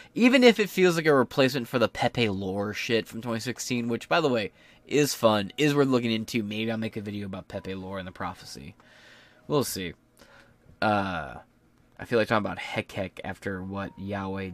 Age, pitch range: 20-39, 95-130 Hz